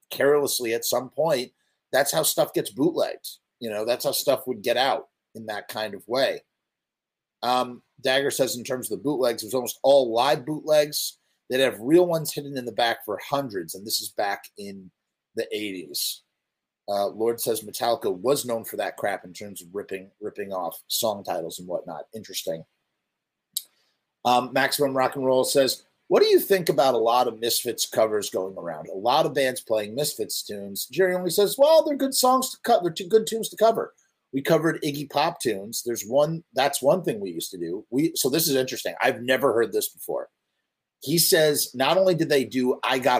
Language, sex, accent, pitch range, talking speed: English, male, American, 120-180 Hz, 205 wpm